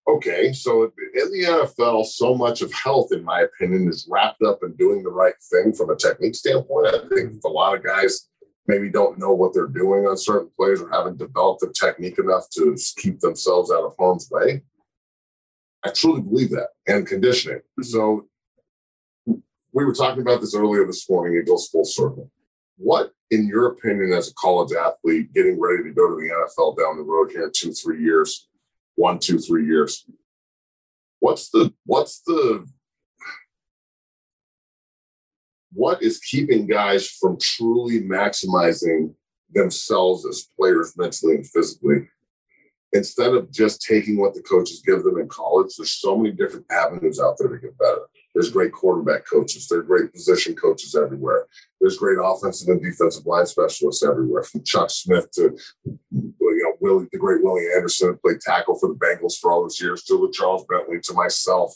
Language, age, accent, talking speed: English, 40-59, American, 175 wpm